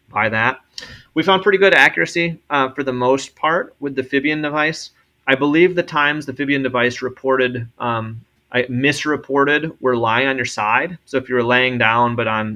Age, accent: 30-49, American